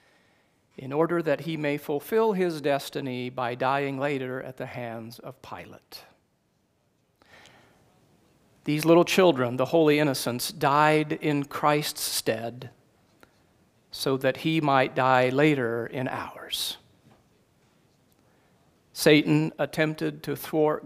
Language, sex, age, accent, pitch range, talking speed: English, male, 50-69, American, 130-155 Hz, 110 wpm